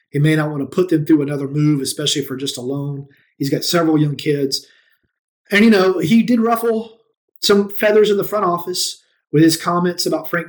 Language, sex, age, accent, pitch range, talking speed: English, male, 30-49, American, 140-170 Hz, 210 wpm